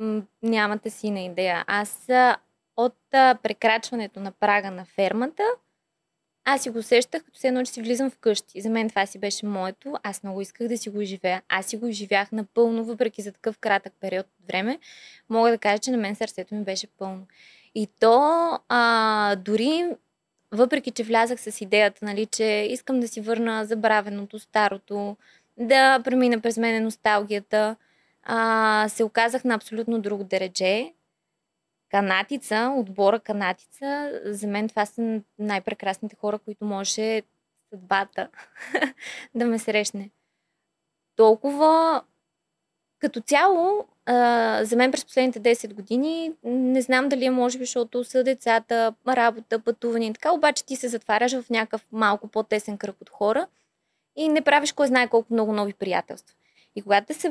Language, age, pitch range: Bulgarian, 20-39, 205-245 Hz